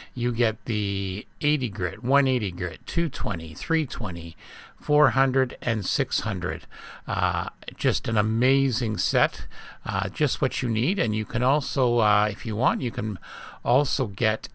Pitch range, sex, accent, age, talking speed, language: 105-135 Hz, male, American, 50-69, 140 wpm, English